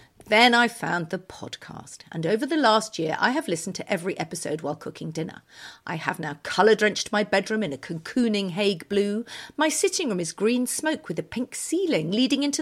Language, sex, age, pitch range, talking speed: English, female, 50-69, 190-265 Hz, 205 wpm